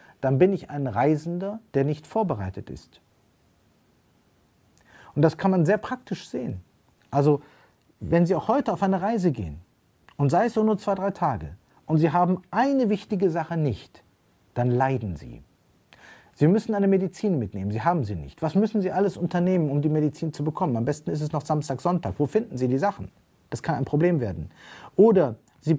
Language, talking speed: German, 190 wpm